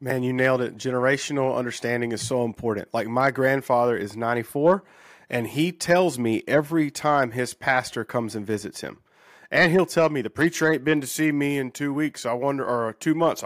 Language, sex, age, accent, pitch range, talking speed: English, male, 40-59, American, 125-160 Hz, 190 wpm